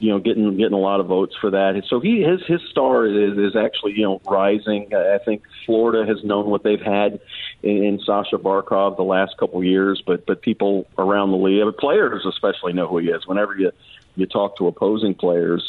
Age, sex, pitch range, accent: 40-59, male, 95-110 Hz, American